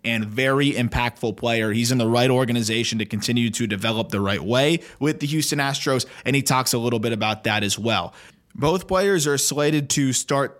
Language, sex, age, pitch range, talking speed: English, male, 20-39, 115-150 Hz, 205 wpm